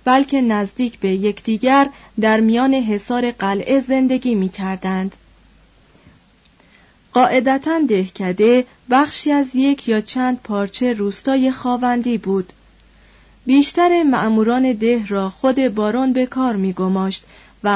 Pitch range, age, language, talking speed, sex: 200-255 Hz, 30-49, Persian, 110 wpm, female